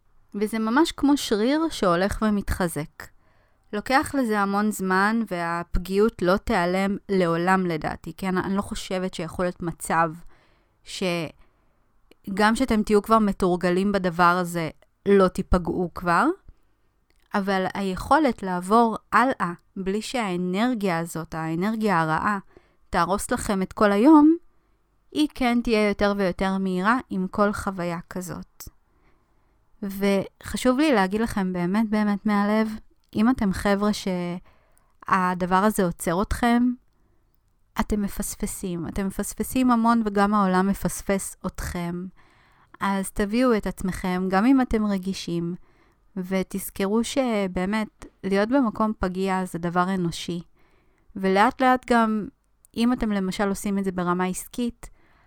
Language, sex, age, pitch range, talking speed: Hebrew, female, 20-39, 185-220 Hz, 115 wpm